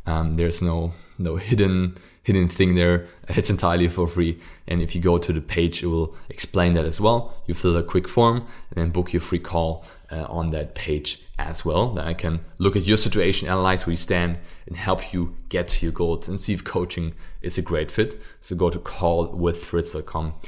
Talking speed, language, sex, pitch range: 210 wpm, English, male, 85-95 Hz